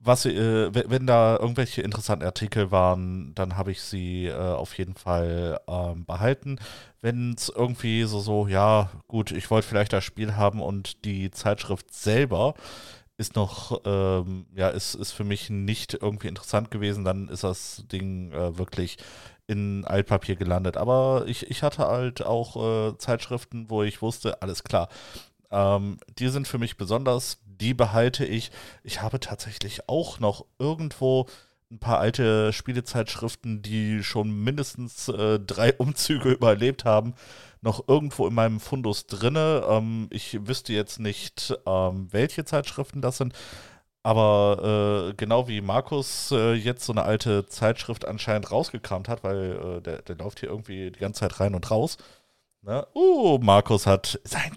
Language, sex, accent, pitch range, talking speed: German, male, German, 100-120 Hz, 160 wpm